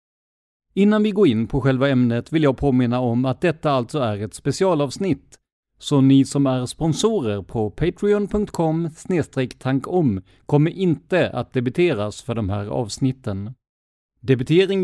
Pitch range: 120-160 Hz